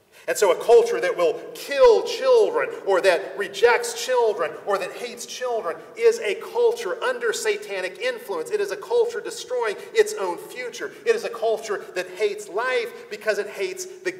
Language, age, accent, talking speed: English, 40-59, American, 175 wpm